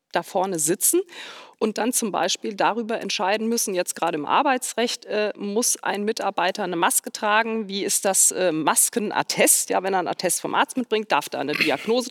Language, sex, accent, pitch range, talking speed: German, female, German, 190-250 Hz, 190 wpm